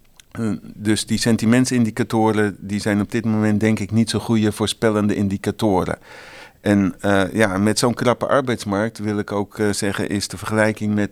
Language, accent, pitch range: Dutch, Dutch, 100-115 Hz